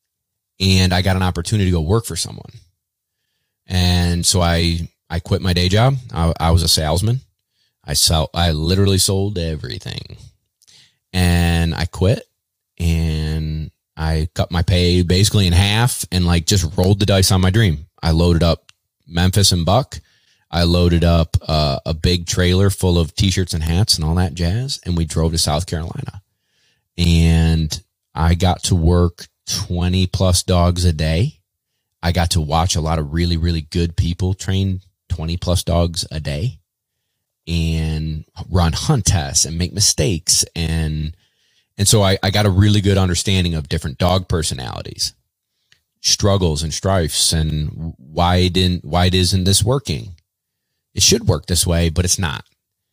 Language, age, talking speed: English, 30-49, 165 wpm